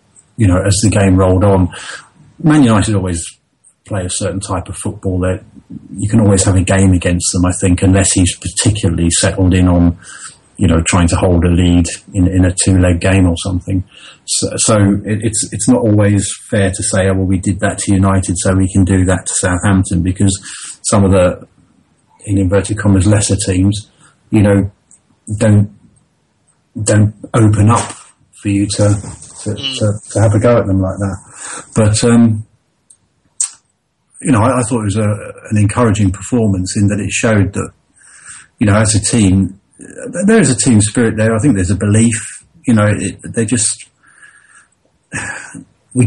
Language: English